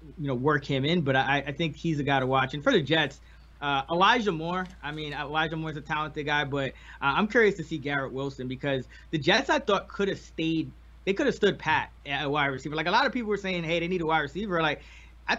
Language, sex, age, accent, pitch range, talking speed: English, male, 20-39, American, 135-165 Hz, 265 wpm